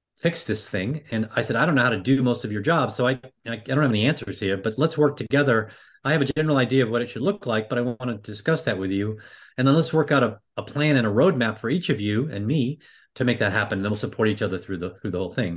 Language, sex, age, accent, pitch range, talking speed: English, male, 30-49, American, 100-130 Hz, 310 wpm